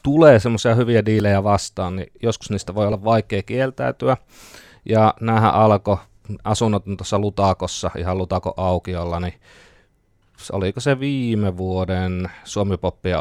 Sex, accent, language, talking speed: male, native, Finnish, 125 wpm